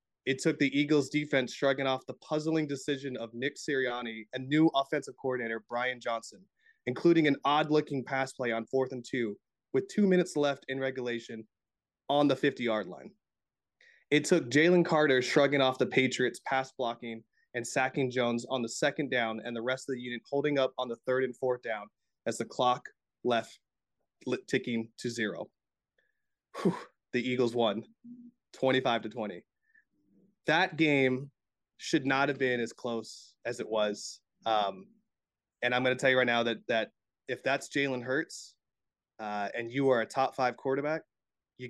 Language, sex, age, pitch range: English, male, 20-39, 115-140 Hz